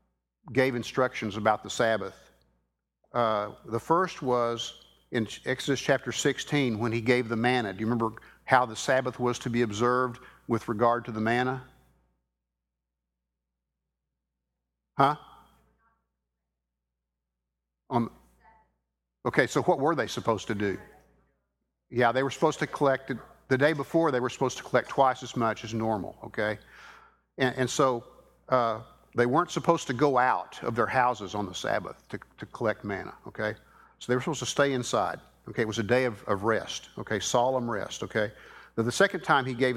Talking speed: 165 wpm